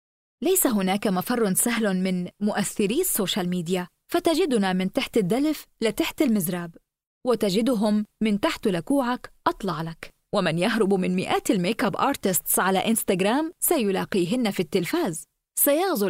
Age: 20-39